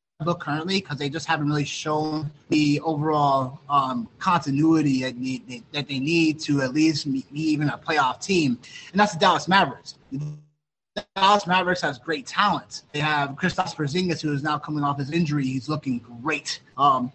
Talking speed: 180 wpm